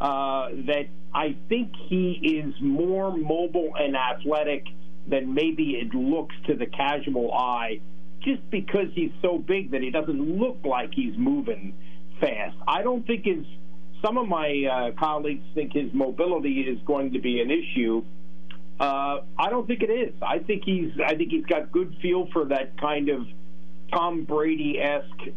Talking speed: 170 wpm